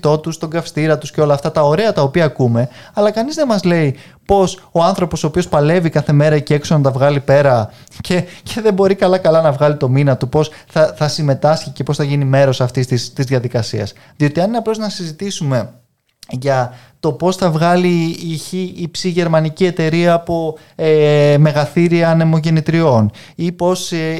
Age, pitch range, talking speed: 20-39, 135-175 Hz, 185 wpm